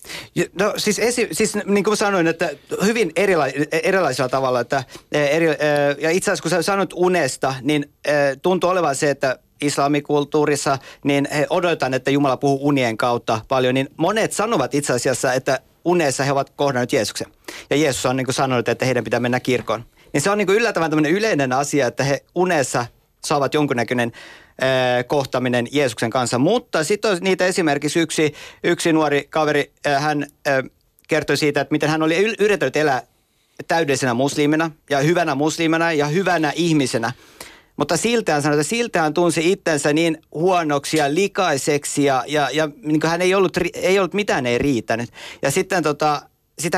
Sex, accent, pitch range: male, native, 140-170 Hz